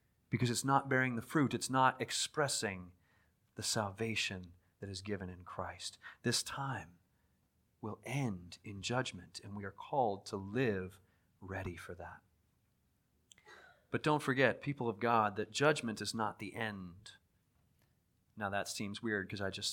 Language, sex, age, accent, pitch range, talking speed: English, male, 30-49, American, 100-155 Hz, 150 wpm